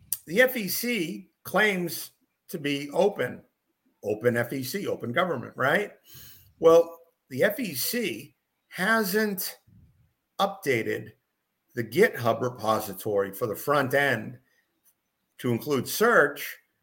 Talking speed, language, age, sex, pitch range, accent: 95 wpm, English, 50-69, male, 120-165 Hz, American